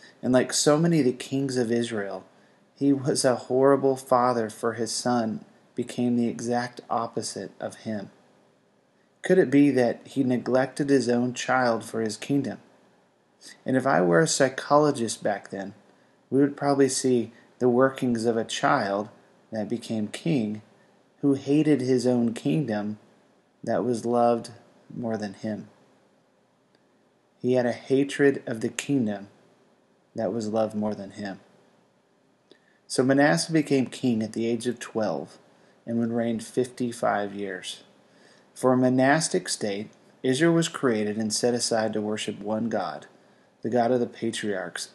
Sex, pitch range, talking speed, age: male, 110-135 Hz, 150 wpm, 30-49